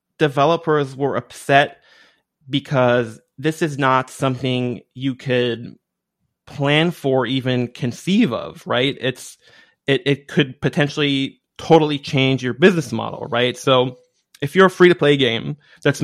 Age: 20-39